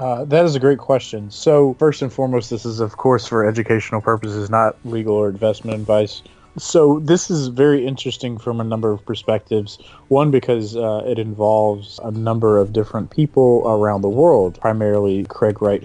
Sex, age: male, 20-39